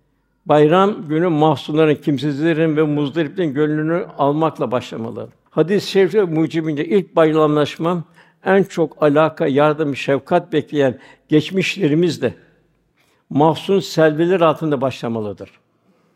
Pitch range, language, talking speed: 150-170 Hz, Turkish, 95 wpm